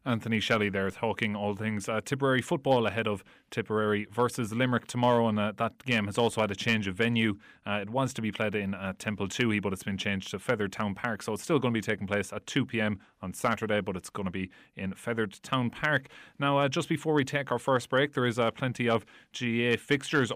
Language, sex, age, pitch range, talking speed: English, male, 30-49, 105-120 Hz, 235 wpm